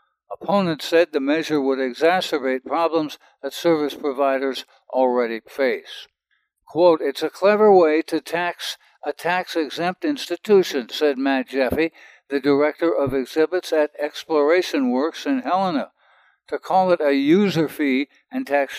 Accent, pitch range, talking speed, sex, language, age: American, 140-170 Hz, 135 wpm, male, English, 60-79